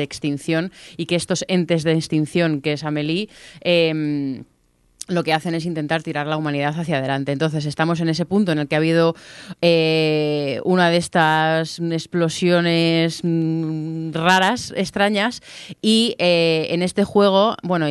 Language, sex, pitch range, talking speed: Spanish, female, 150-175 Hz, 150 wpm